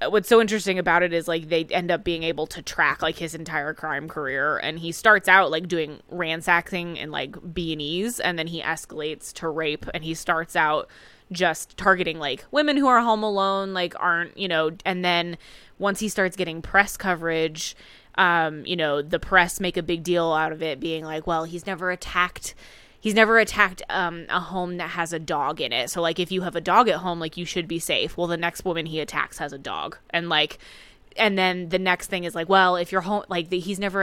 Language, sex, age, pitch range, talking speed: English, female, 20-39, 160-185 Hz, 225 wpm